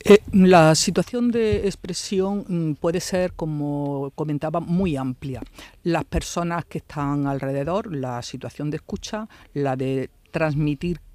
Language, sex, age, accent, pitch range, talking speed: Spanish, female, 50-69, Spanish, 145-175 Hz, 125 wpm